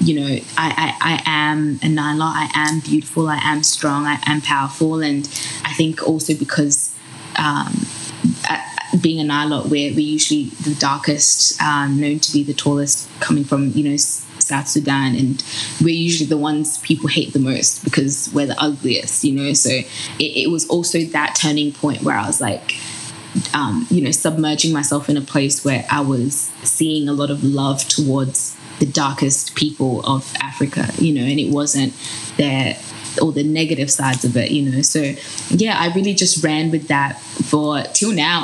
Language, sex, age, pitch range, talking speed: English, female, 20-39, 140-160 Hz, 185 wpm